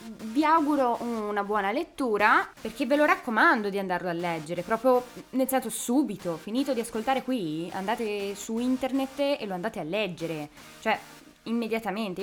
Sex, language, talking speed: female, Italian, 145 wpm